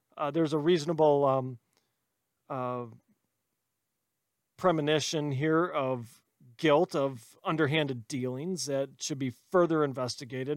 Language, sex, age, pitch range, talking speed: English, male, 40-59, 130-180 Hz, 100 wpm